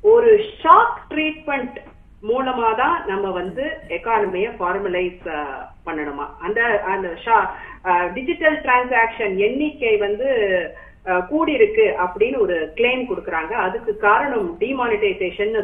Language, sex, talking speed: Tamil, female, 85 wpm